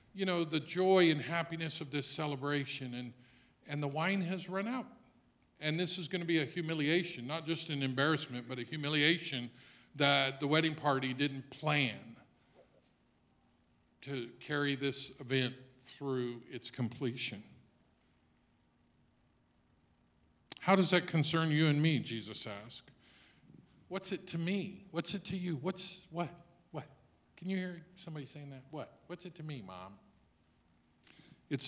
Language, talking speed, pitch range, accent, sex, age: English, 145 wpm, 120-165 Hz, American, male, 50-69